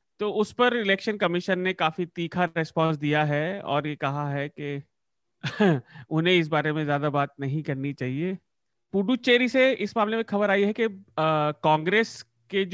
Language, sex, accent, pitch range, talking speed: Hindi, male, native, 140-175 Hz, 125 wpm